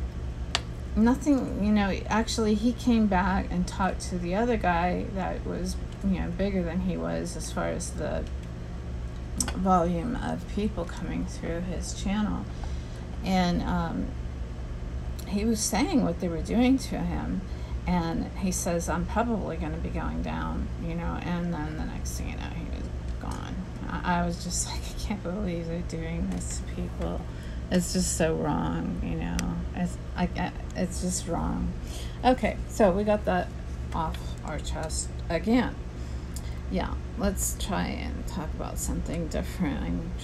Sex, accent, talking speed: female, American, 160 wpm